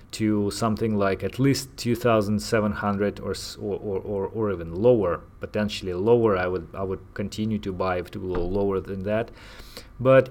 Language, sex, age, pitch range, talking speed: English, male, 30-49, 100-120 Hz, 165 wpm